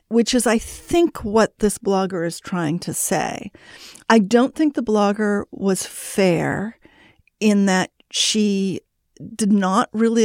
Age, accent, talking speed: 50-69, American, 140 wpm